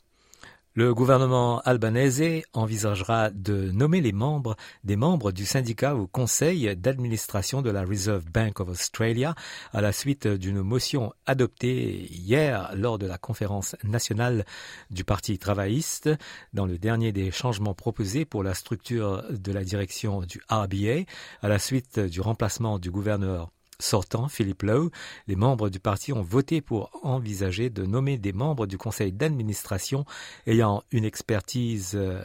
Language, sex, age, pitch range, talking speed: French, male, 50-69, 100-130 Hz, 145 wpm